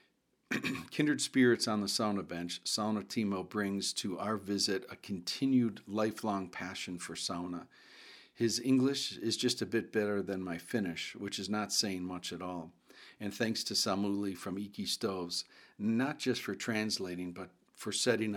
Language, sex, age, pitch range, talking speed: English, male, 50-69, 90-110 Hz, 160 wpm